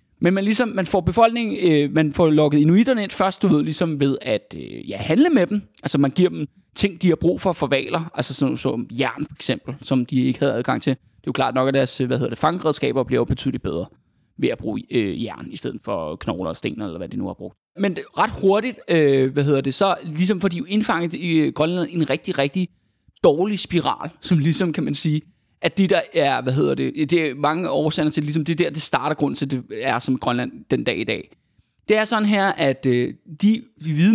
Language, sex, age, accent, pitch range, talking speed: Danish, male, 20-39, native, 140-190 Hz, 230 wpm